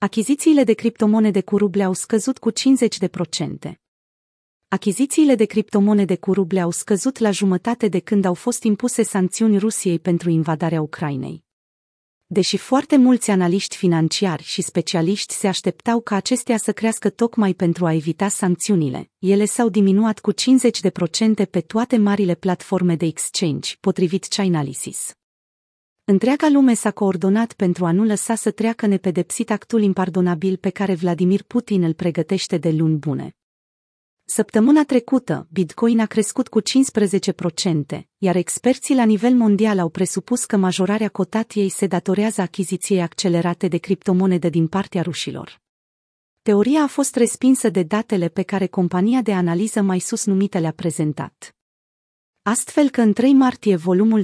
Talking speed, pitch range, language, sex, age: 145 wpm, 180-220 Hz, Romanian, female, 30-49